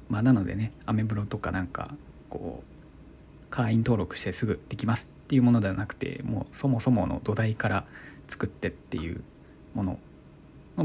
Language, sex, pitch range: Japanese, male, 110-140 Hz